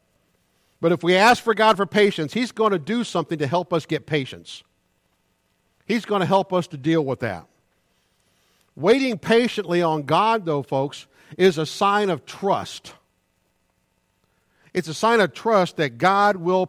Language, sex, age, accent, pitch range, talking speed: English, male, 50-69, American, 160-220 Hz, 165 wpm